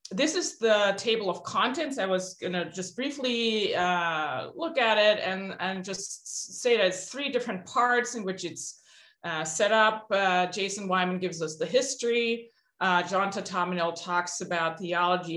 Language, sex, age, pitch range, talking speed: English, female, 20-39, 175-220 Hz, 170 wpm